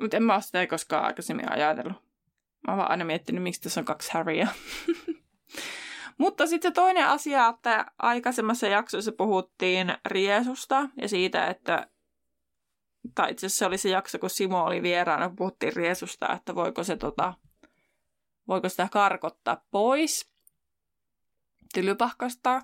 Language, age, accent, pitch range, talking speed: Finnish, 20-39, native, 180-240 Hz, 135 wpm